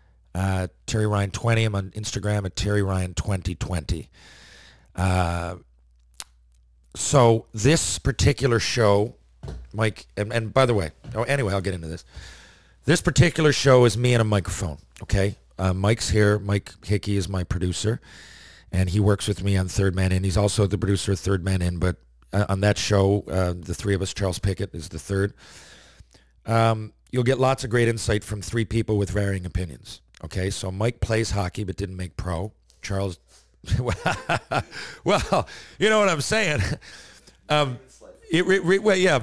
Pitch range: 95-115 Hz